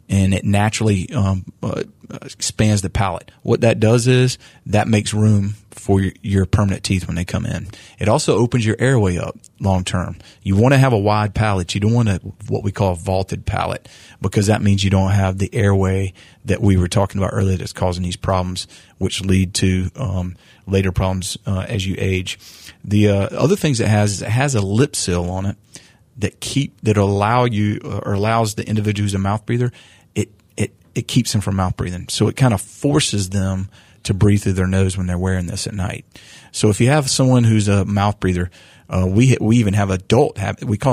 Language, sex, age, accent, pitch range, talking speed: English, male, 30-49, American, 95-115 Hz, 215 wpm